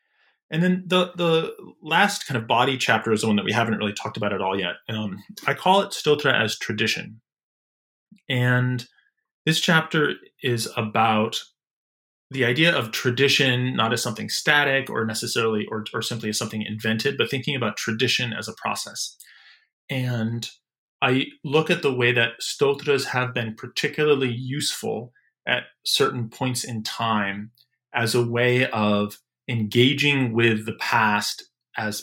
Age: 30-49